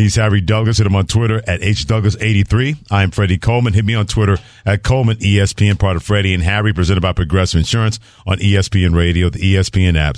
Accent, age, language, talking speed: American, 40-59, English, 205 wpm